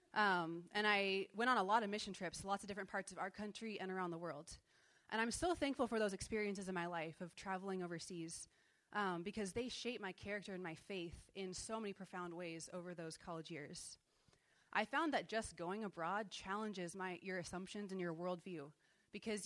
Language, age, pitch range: English, 20-39, 175-210 Hz